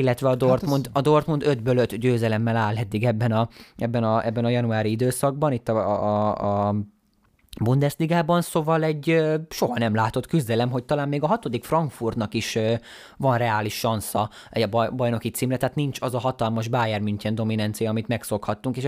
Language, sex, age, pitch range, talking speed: Hungarian, male, 20-39, 110-140 Hz, 170 wpm